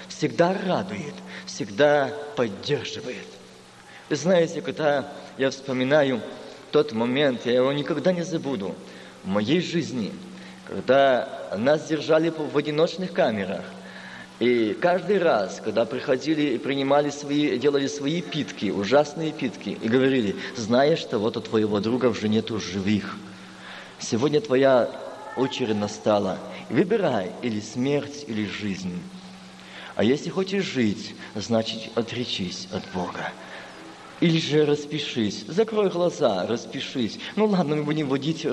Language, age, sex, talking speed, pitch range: Russian, 30-49, male, 120 wpm, 105-150 Hz